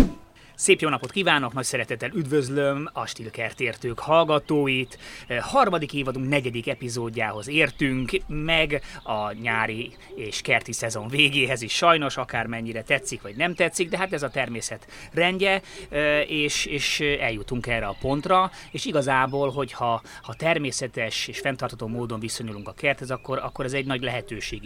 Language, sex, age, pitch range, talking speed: Hungarian, male, 30-49, 115-140 Hz, 135 wpm